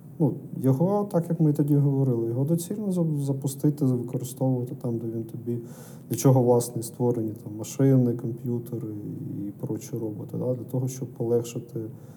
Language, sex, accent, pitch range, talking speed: Ukrainian, male, native, 115-140 Hz, 150 wpm